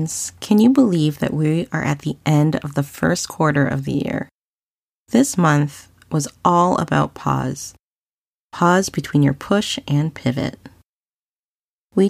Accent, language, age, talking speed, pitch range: American, English, 20-39, 145 wpm, 140-175 Hz